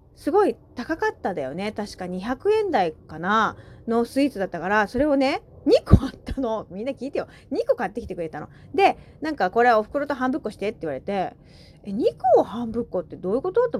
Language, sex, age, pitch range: Japanese, female, 30-49, 205-315 Hz